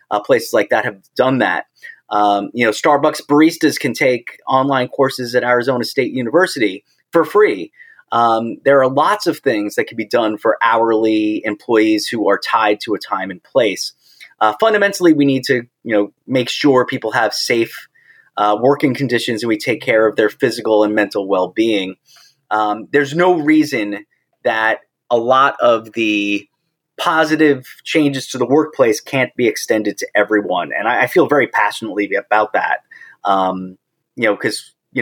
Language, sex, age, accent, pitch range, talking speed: English, male, 30-49, American, 110-160 Hz, 170 wpm